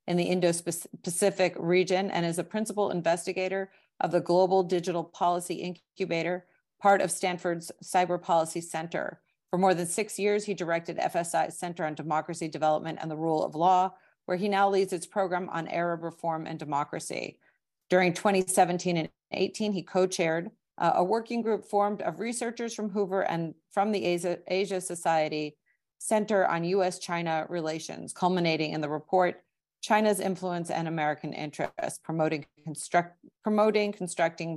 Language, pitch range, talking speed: English, 165-195 Hz, 150 wpm